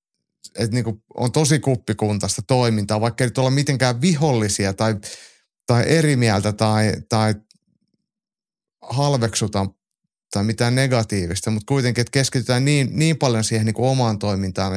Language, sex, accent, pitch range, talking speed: Finnish, male, native, 105-130 Hz, 135 wpm